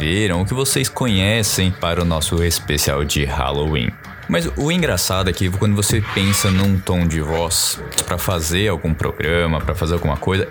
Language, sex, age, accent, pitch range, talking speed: Portuguese, male, 20-39, Brazilian, 85-105 Hz, 170 wpm